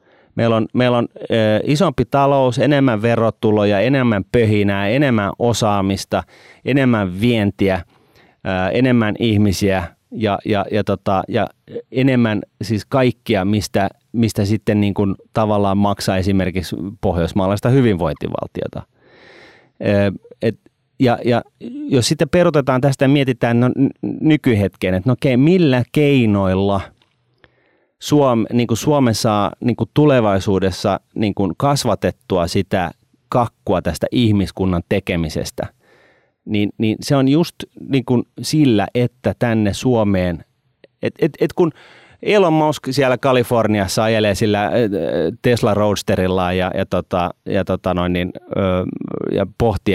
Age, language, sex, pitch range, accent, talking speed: 30-49, Finnish, male, 100-125 Hz, native, 115 wpm